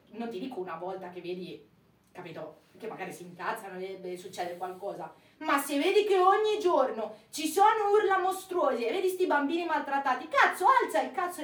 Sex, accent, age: female, native, 30-49